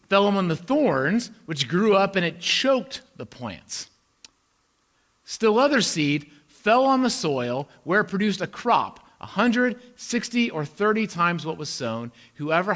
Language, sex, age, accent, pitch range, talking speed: English, male, 40-59, American, 140-190 Hz, 160 wpm